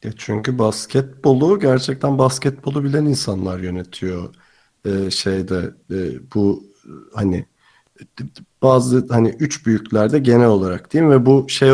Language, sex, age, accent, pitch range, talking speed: Turkish, male, 40-59, native, 100-130 Hz, 120 wpm